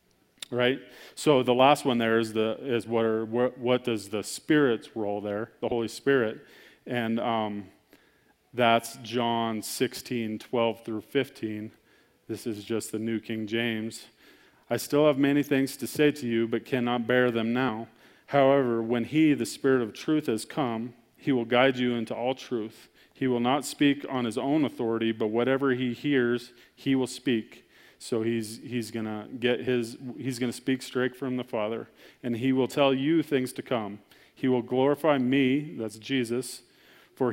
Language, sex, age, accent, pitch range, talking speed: English, male, 40-59, American, 115-130 Hz, 170 wpm